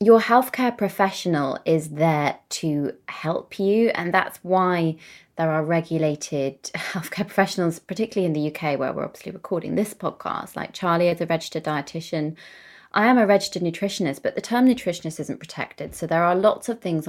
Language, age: English, 20-39